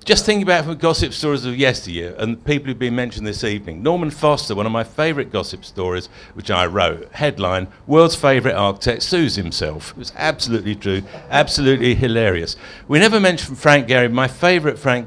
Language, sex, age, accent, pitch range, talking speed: English, male, 50-69, British, 100-140 Hz, 185 wpm